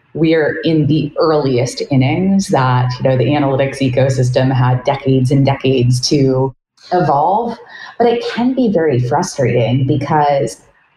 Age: 30-49